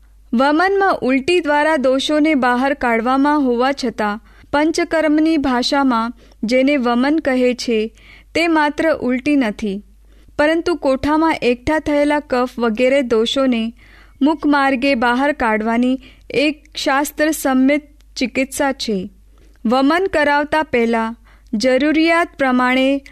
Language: Hindi